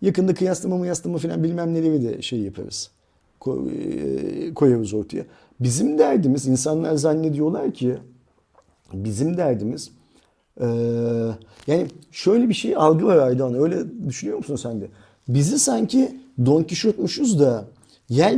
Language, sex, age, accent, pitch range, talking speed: Turkish, male, 50-69, native, 120-185 Hz, 125 wpm